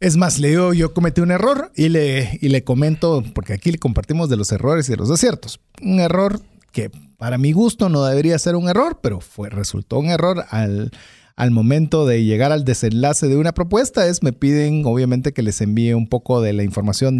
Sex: male